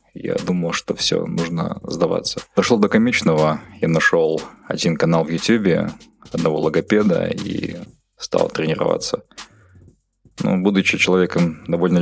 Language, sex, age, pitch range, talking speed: Russian, male, 20-39, 80-95 Hz, 120 wpm